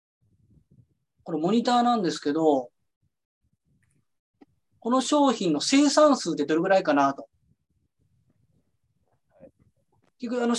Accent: native